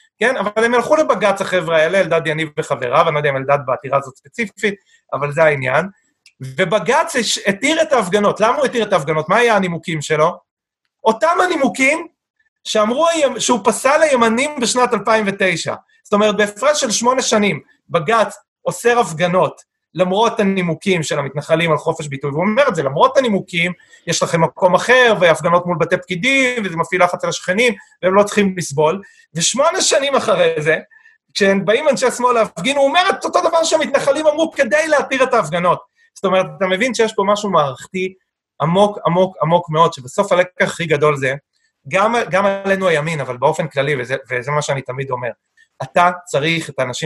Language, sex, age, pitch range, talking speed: Hebrew, male, 30-49, 165-250 Hz, 165 wpm